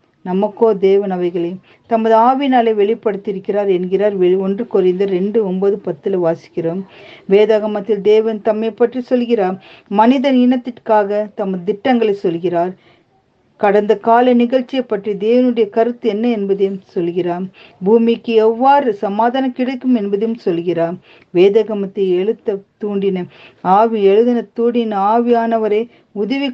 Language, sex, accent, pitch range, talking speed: Tamil, female, native, 190-235 Hz, 105 wpm